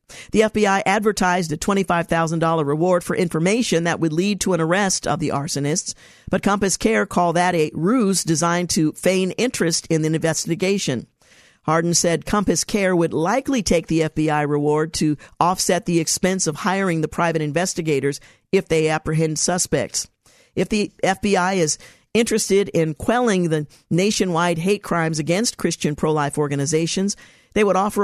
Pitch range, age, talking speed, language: 155-190 Hz, 50-69, 155 wpm, English